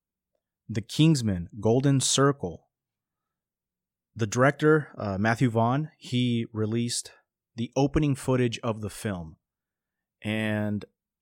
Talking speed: 95 wpm